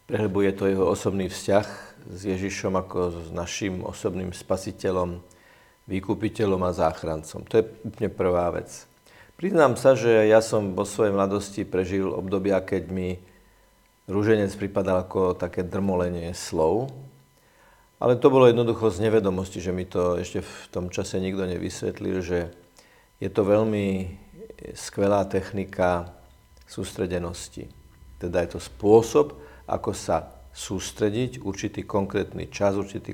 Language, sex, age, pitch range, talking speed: Slovak, male, 50-69, 90-110 Hz, 130 wpm